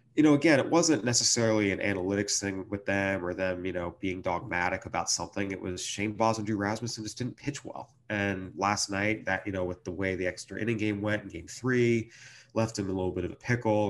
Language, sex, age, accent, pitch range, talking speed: English, male, 30-49, American, 95-110 Hz, 240 wpm